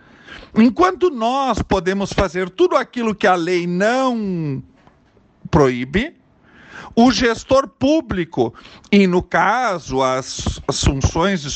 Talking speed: 105 wpm